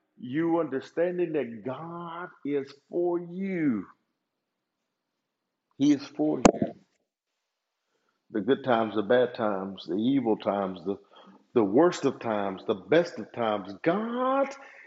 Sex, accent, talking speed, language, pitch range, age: male, American, 120 wpm, English, 125-200 Hz, 50-69